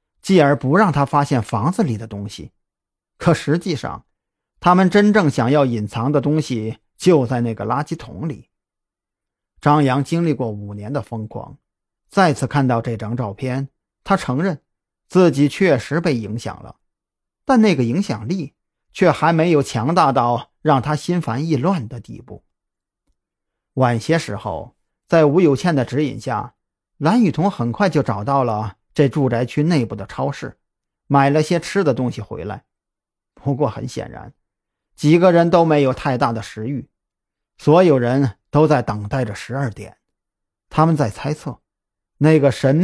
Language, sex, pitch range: Chinese, male, 120-160 Hz